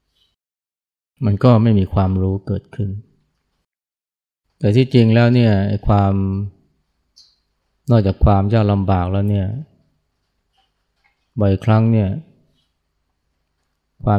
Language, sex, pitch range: Thai, male, 90-105 Hz